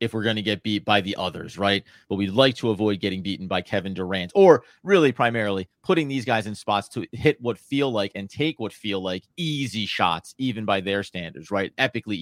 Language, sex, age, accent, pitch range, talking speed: English, male, 30-49, American, 105-140 Hz, 225 wpm